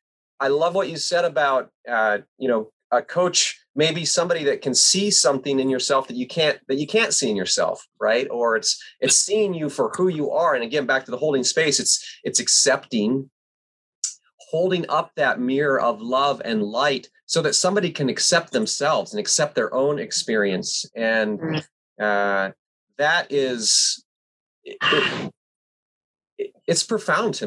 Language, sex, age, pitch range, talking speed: English, male, 30-49, 130-205 Hz, 160 wpm